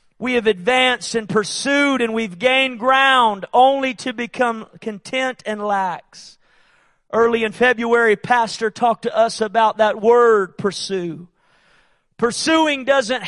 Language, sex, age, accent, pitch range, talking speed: English, male, 40-59, American, 215-255 Hz, 125 wpm